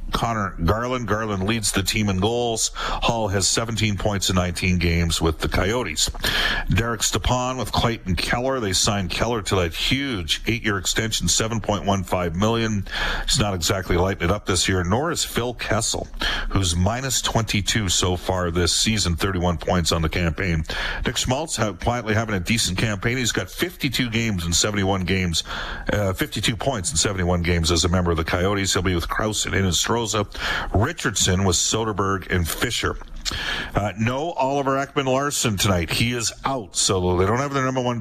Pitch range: 90-110 Hz